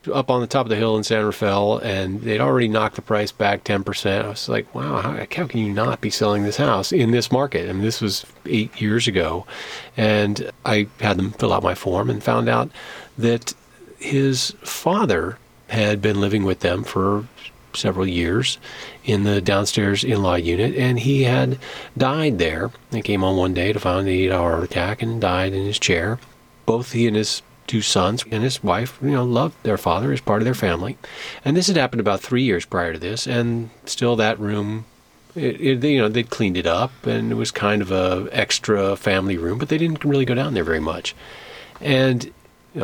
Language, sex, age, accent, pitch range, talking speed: English, male, 40-59, American, 100-120 Hz, 210 wpm